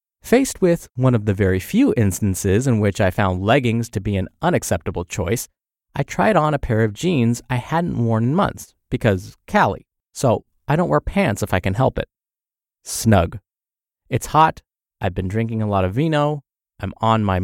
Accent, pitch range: American, 110-160 Hz